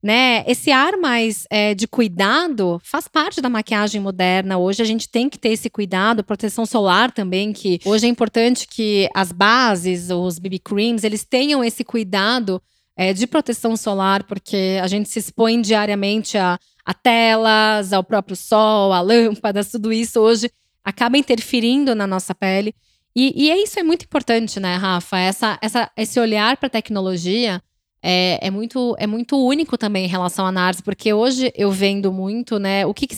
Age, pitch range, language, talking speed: 10-29, 200-245 Hz, Portuguese, 175 wpm